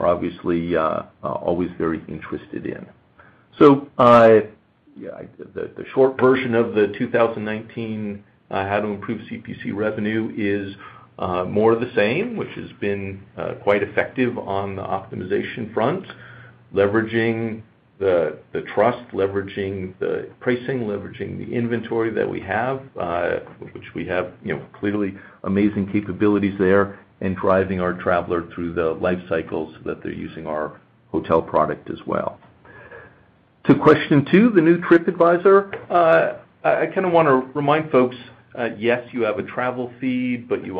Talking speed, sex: 155 wpm, male